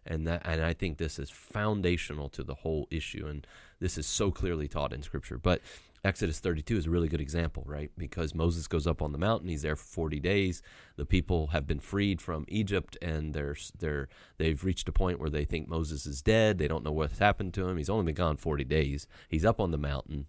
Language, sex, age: English, male, 30-49